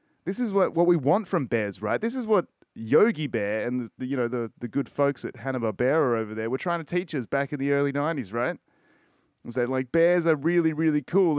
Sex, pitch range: male, 110-165 Hz